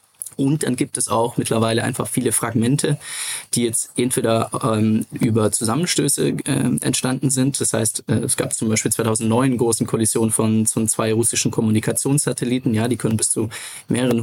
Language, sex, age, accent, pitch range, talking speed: German, male, 20-39, German, 110-130 Hz, 165 wpm